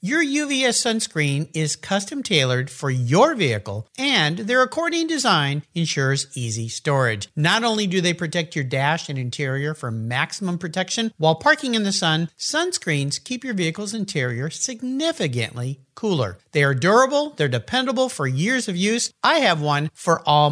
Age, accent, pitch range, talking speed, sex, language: 50-69, American, 140-230 Hz, 160 wpm, male, English